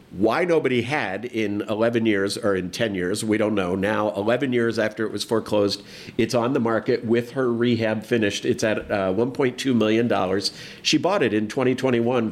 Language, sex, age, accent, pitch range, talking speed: English, male, 50-69, American, 105-120 Hz, 185 wpm